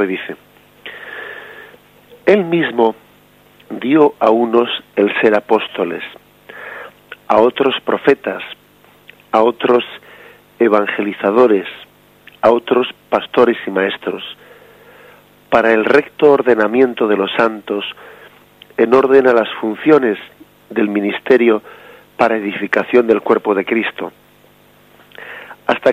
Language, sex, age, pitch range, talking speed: Spanish, male, 50-69, 110-145 Hz, 95 wpm